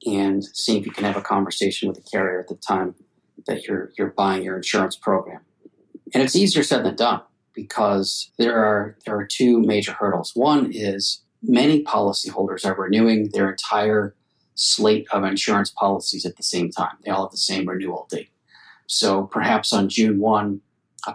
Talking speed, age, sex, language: 180 wpm, 40-59, male, English